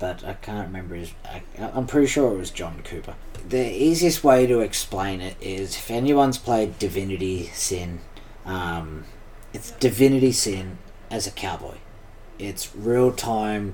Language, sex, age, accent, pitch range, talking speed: English, male, 30-49, Australian, 95-120 Hz, 150 wpm